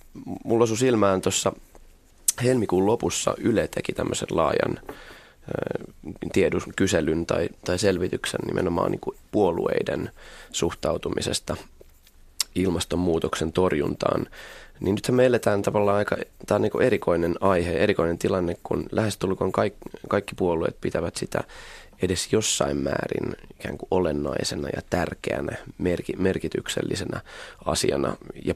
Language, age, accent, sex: Finnish, 20-39, native, male